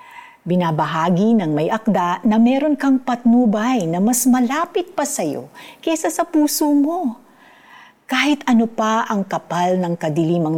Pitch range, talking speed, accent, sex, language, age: 165-240 Hz, 140 wpm, native, female, Filipino, 50-69